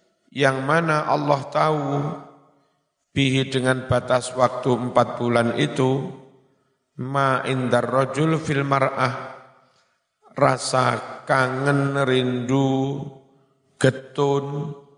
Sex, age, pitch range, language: male, 50-69, 120-135 Hz, Indonesian